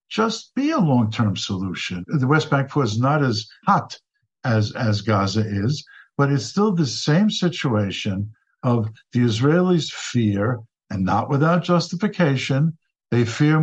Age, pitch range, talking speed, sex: 50-69, 115-175 Hz, 140 wpm, male